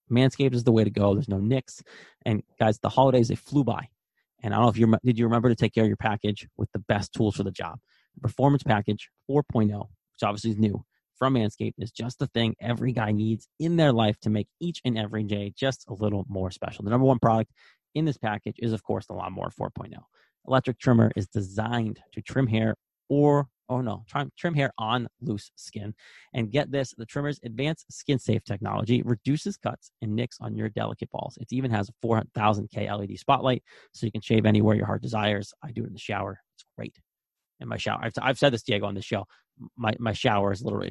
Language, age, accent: English, 30-49, American